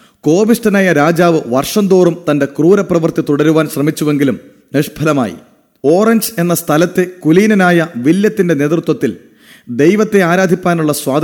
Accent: Indian